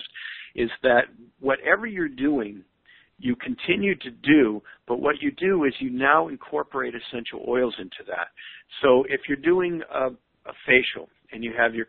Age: 50-69